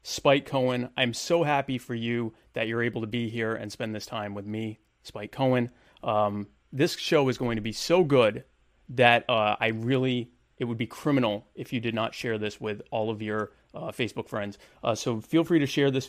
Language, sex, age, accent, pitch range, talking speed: English, male, 30-49, American, 110-140 Hz, 215 wpm